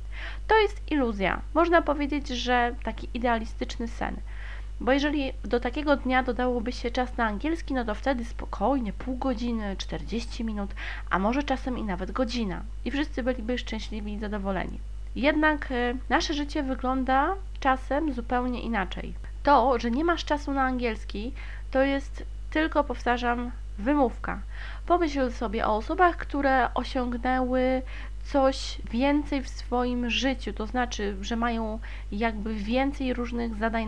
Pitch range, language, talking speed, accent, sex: 225-275 Hz, Polish, 135 wpm, native, female